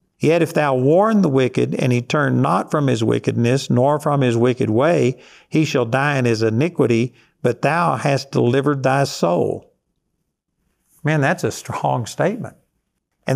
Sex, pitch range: male, 125-160 Hz